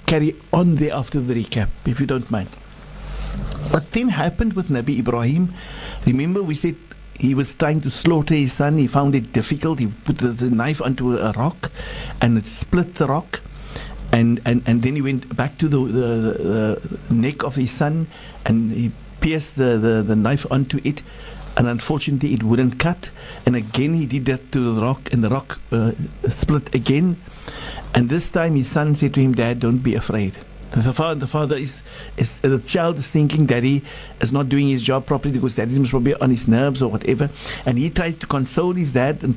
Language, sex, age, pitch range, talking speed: English, male, 60-79, 125-160 Hz, 205 wpm